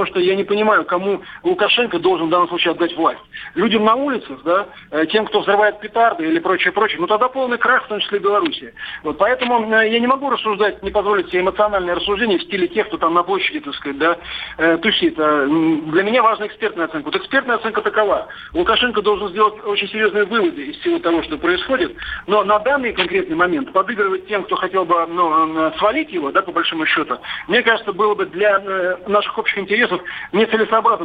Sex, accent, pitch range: male, native, 185-235 Hz